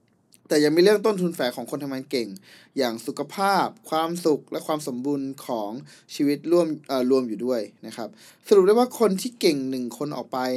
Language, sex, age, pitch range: Thai, male, 20-39, 125-155 Hz